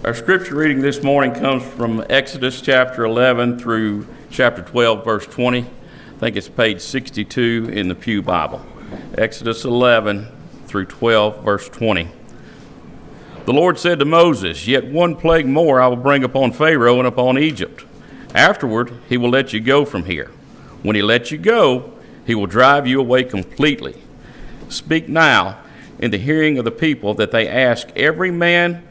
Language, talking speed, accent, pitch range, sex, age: English, 165 wpm, American, 110-150 Hz, male, 50-69